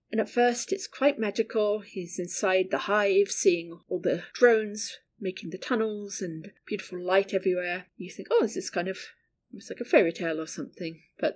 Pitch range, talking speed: 185-245 Hz, 185 wpm